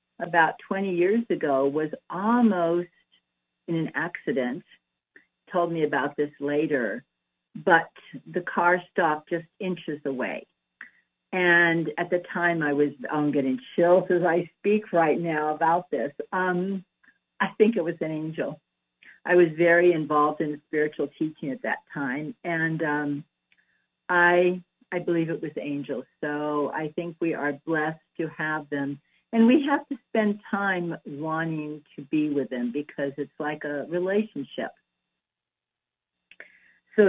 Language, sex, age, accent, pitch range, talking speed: English, female, 50-69, American, 145-190 Hz, 140 wpm